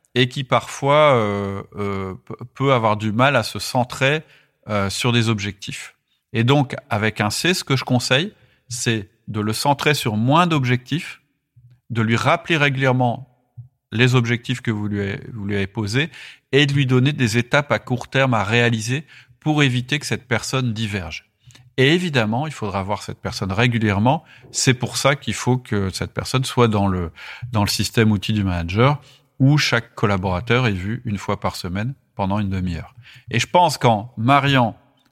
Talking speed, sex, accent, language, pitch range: 180 wpm, male, French, French, 105-130 Hz